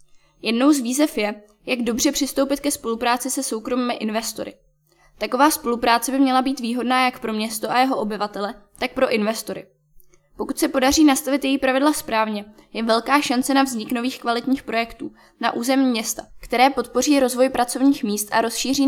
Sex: female